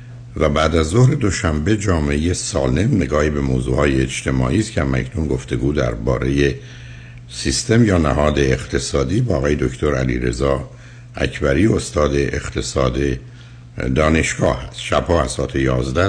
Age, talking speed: 60-79, 125 wpm